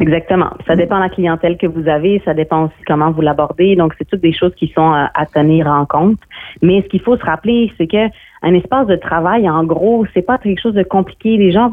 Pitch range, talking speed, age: 165-195 Hz, 245 wpm, 30-49